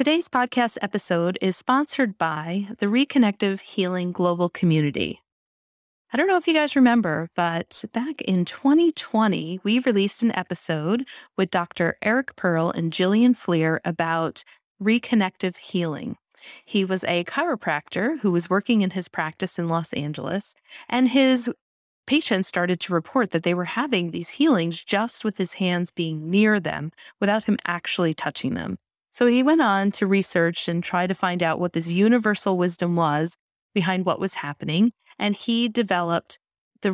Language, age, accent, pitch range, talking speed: English, 30-49, American, 175-225 Hz, 160 wpm